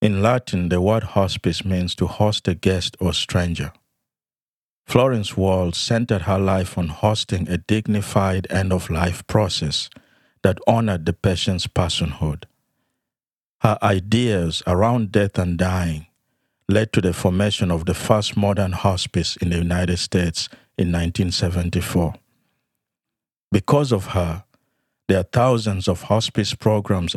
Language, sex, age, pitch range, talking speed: English, male, 50-69, 90-110 Hz, 130 wpm